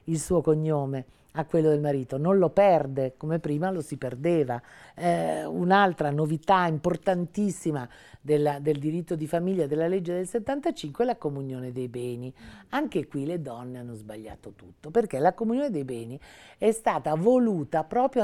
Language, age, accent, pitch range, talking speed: Italian, 50-69, native, 150-205 Hz, 160 wpm